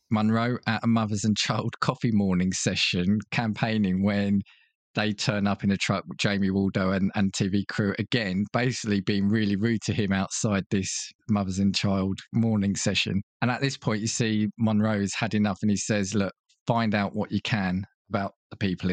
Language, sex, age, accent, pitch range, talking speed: English, male, 20-39, British, 95-115 Hz, 185 wpm